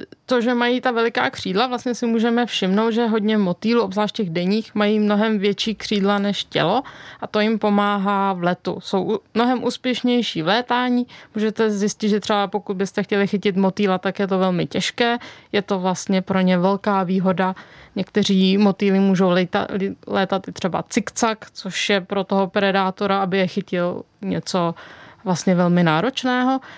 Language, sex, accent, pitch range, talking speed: Czech, female, native, 190-225 Hz, 165 wpm